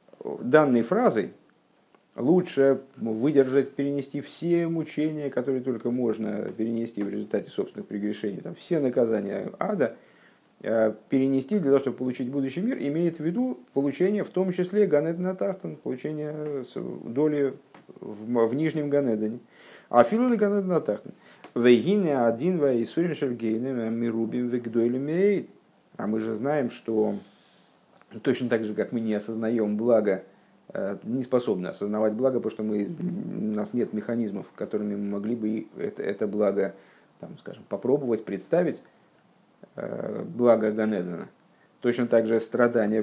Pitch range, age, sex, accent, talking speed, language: 115-150 Hz, 50-69, male, native, 115 wpm, Russian